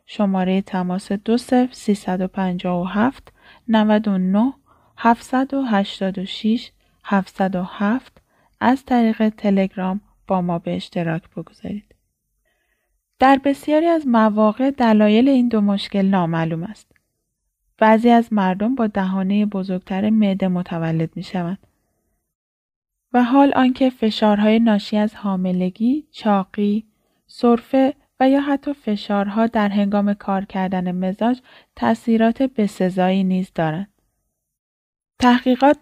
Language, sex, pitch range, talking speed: Persian, female, 190-230 Hz, 95 wpm